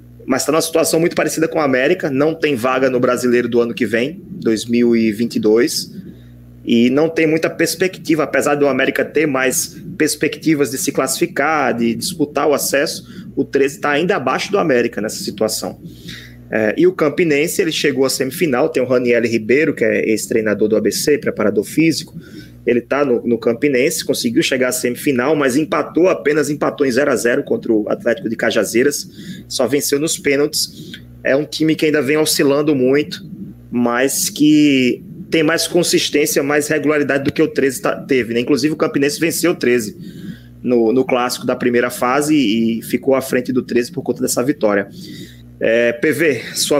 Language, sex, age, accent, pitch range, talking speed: Portuguese, male, 20-39, Brazilian, 120-155 Hz, 175 wpm